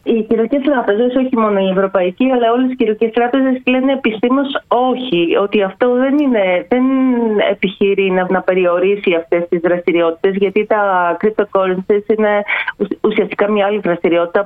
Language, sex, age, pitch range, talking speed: Greek, female, 30-49, 165-225 Hz, 140 wpm